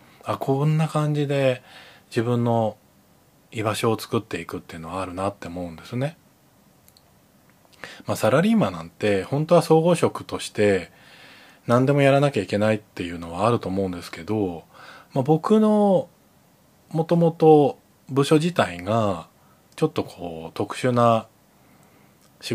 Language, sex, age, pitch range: Japanese, male, 20-39, 95-140 Hz